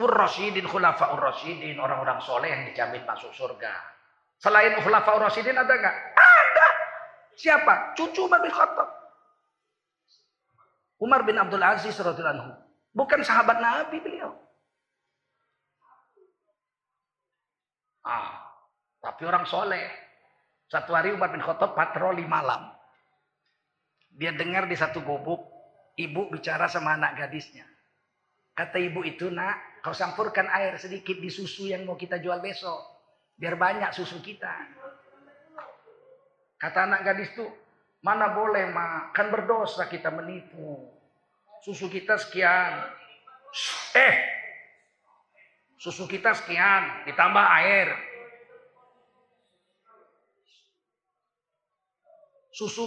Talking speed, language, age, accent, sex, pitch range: 100 wpm, Indonesian, 40-59, native, male, 195-315 Hz